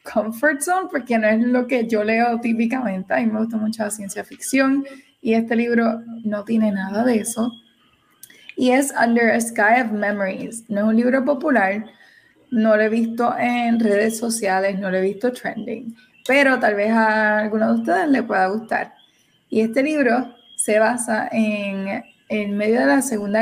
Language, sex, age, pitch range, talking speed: Spanish, female, 20-39, 210-245 Hz, 180 wpm